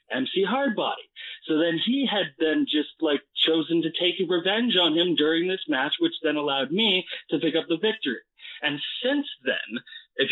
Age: 20-39